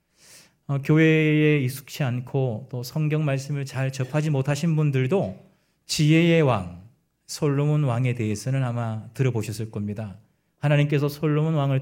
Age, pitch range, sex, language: 40-59, 120-155 Hz, male, Korean